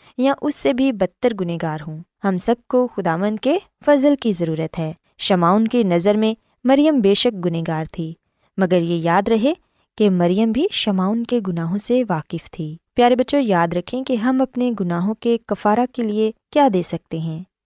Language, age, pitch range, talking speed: Urdu, 20-39, 175-255 Hz, 180 wpm